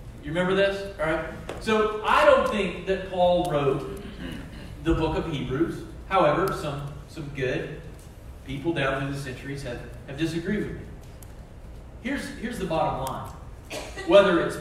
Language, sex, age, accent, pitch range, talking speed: English, male, 40-59, American, 155-205 Hz, 150 wpm